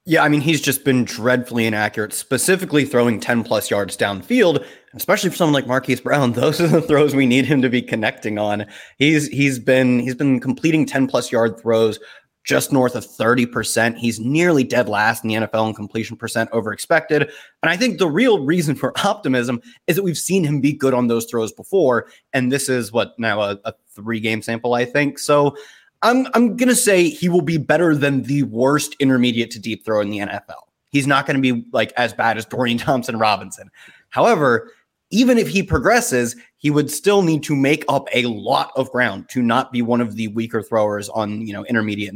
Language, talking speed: English, 210 wpm